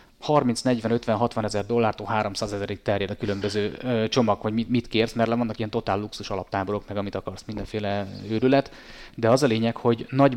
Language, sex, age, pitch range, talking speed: Hungarian, male, 30-49, 105-125 Hz, 190 wpm